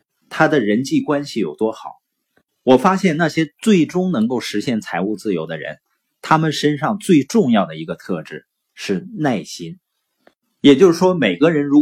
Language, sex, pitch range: Chinese, male, 120-185 Hz